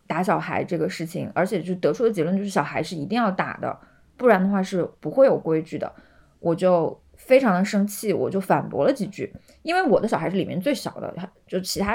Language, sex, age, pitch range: Chinese, female, 20-39, 160-205 Hz